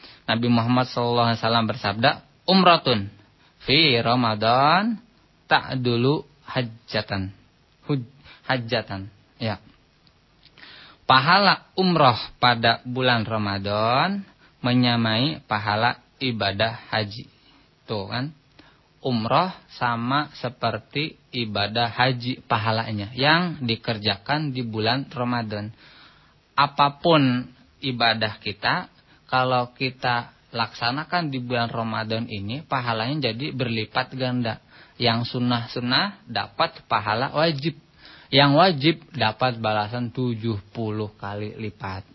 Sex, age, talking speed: male, 20-39, 85 wpm